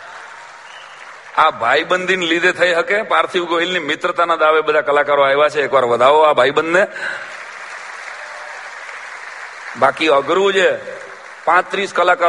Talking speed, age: 60 wpm, 40-59